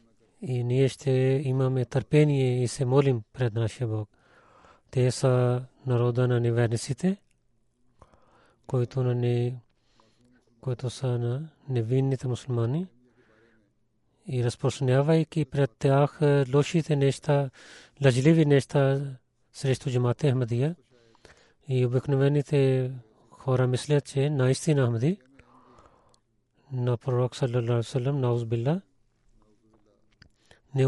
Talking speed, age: 85 wpm, 30-49